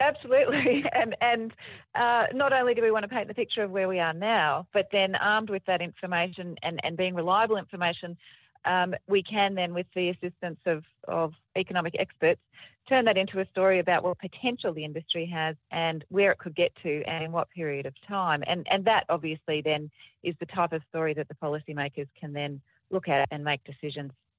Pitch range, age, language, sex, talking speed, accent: 150-190 Hz, 30-49, English, female, 205 wpm, Australian